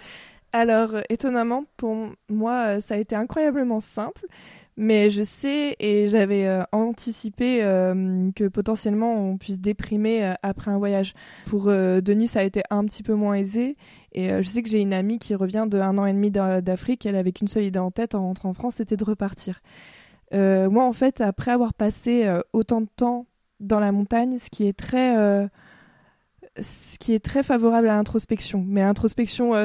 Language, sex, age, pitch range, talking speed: French, female, 20-39, 195-230 Hz, 195 wpm